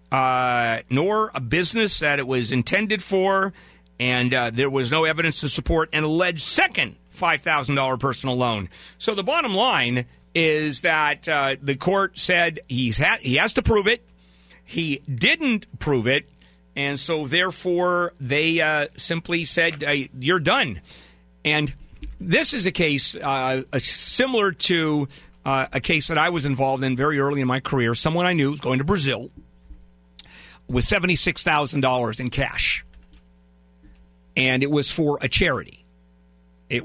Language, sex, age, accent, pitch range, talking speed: English, male, 50-69, American, 115-155 Hz, 155 wpm